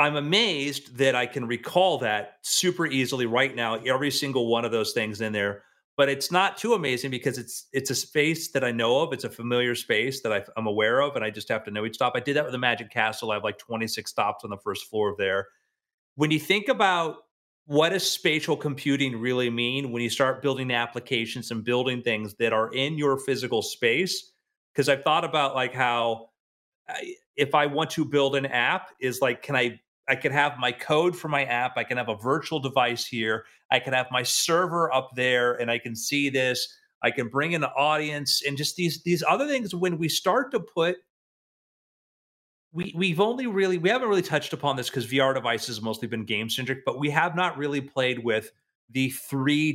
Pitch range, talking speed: 120-155 Hz, 215 wpm